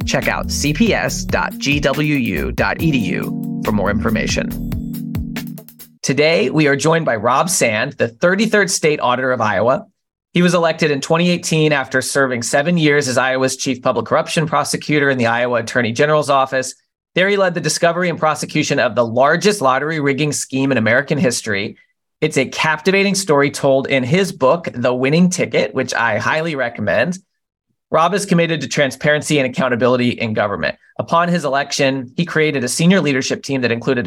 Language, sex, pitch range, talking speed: English, male, 130-165 Hz, 160 wpm